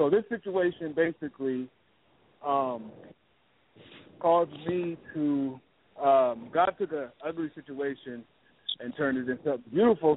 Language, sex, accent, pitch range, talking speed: English, male, American, 140-170 Hz, 110 wpm